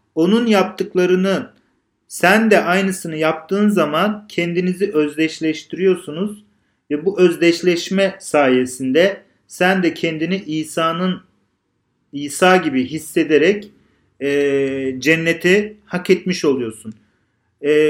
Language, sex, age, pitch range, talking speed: Turkish, male, 40-59, 145-185 Hz, 85 wpm